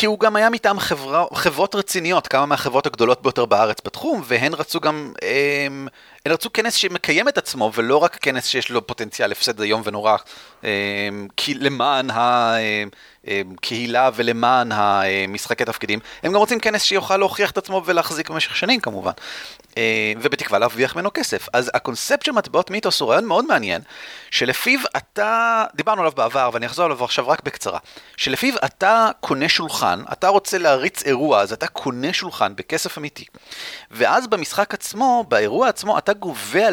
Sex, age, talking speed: male, 30-49, 145 wpm